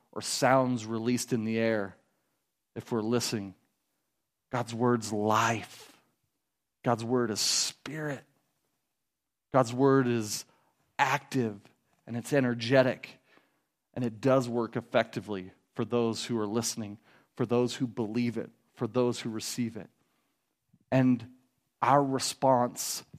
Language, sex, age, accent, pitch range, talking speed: English, male, 40-59, American, 120-160 Hz, 120 wpm